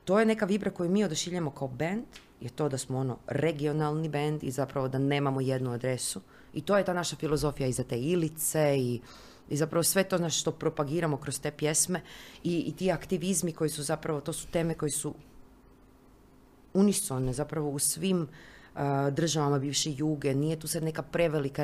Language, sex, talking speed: Croatian, female, 180 wpm